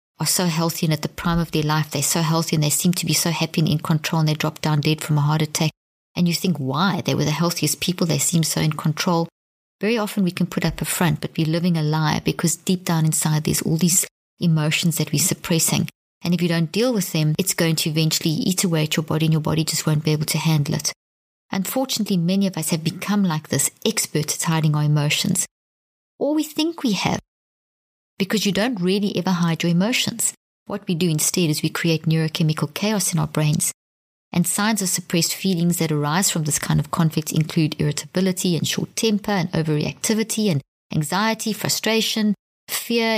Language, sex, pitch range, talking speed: English, female, 155-195 Hz, 220 wpm